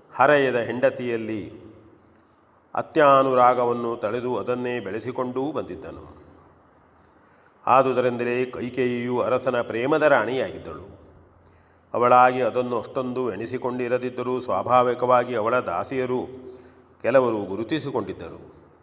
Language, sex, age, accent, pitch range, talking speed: Kannada, male, 40-59, native, 115-130 Hz, 65 wpm